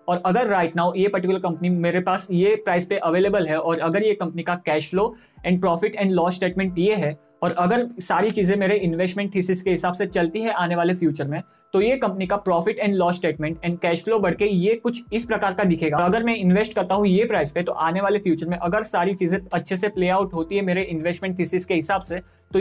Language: Hindi